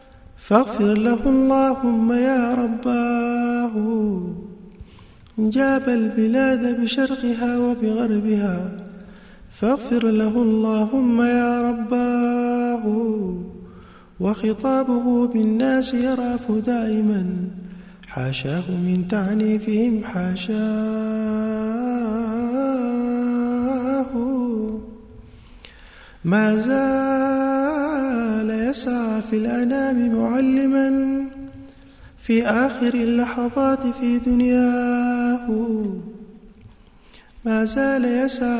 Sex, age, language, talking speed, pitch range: male, 20-39, English, 45 wpm, 215-245 Hz